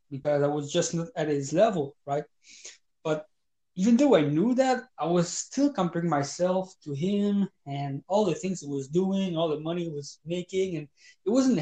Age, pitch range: 20-39, 150-195 Hz